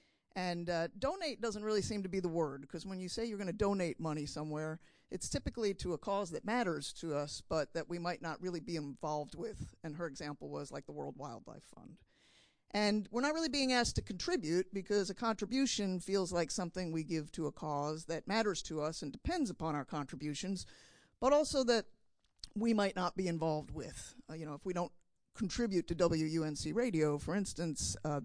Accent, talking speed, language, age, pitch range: American, 205 wpm, English, 50-69, 160-205 Hz